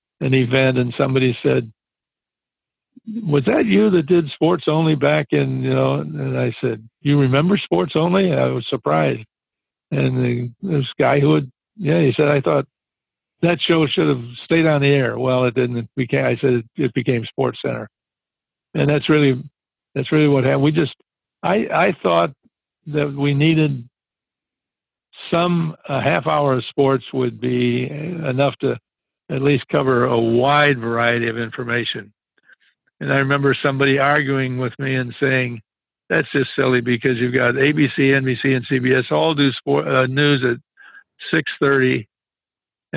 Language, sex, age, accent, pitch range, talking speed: English, male, 60-79, American, 125-145 Hz, 160 wpm